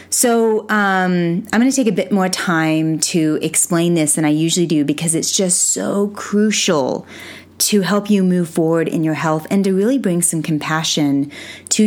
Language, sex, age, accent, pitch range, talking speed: English, female, 30-49, American, 150-180 Hz, 185 wpm